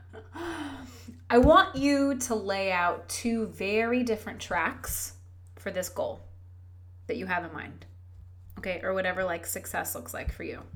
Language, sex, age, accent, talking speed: English, female, 20-39, American, 150 wpm